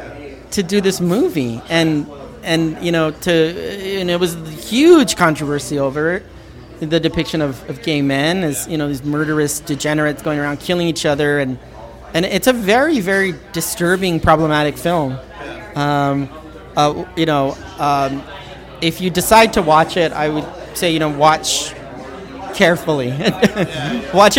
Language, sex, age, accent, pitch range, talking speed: English, male, 30-49, American, 155-205 Hz, 150 wpm